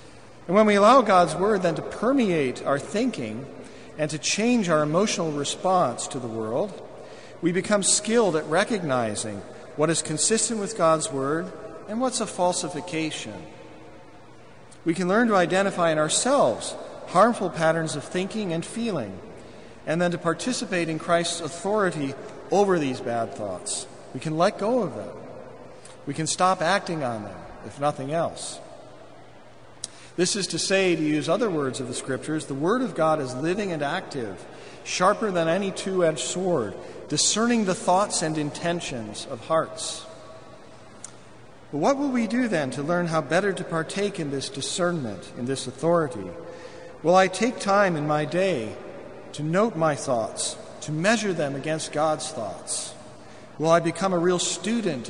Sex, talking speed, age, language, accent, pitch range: male, 160 wpm, 40-59, English, American, 150-195 Hz